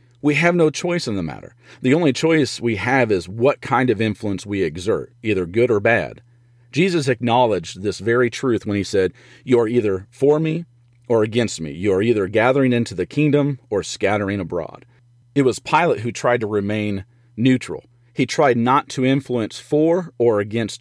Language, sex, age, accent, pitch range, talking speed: English, male, 40-59, American, 110-130 Hz, 185 wpm